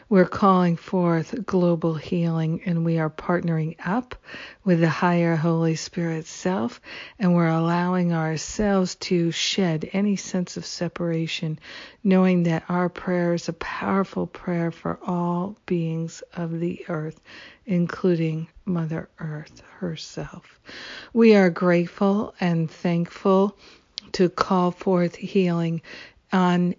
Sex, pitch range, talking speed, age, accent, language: female, 165-185 Hz, 125 wpm, 60-79, American, English